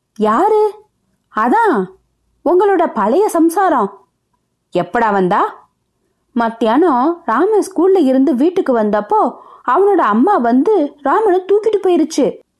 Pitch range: 215-330 Hz